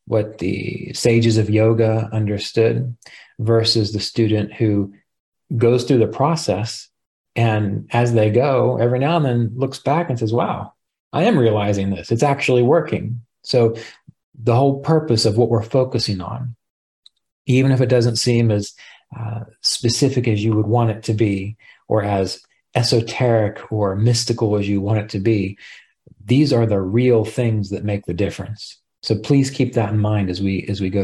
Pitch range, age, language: 105-120 Hz, 40-59, English